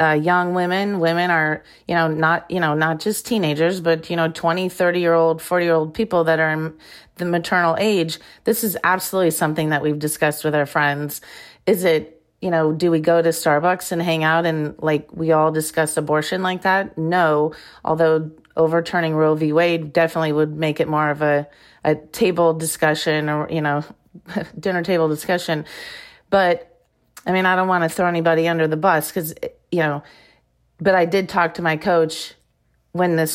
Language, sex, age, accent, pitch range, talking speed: English, female, 30-49, American, 160-185 Hz, 190 wpm